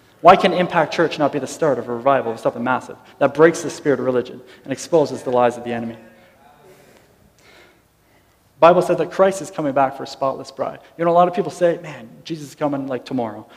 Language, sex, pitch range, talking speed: English, male, 140-175 Hz, 230 wpm